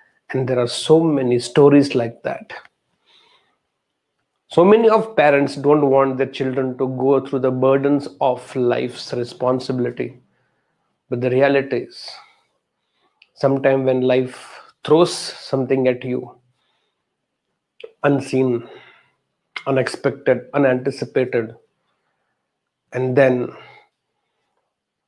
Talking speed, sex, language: 95 wpm, male, English